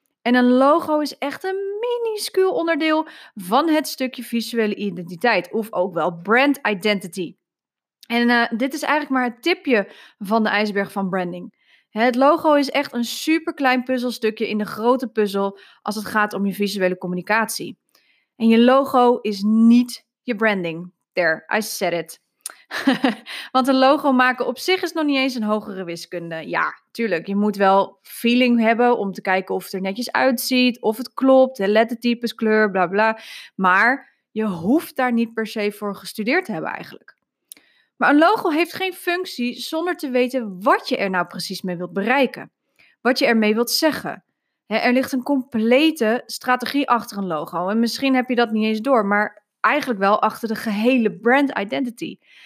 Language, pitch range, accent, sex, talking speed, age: Dutch, 210-270 Hz, Dutch, female, 175 wpm, 20-39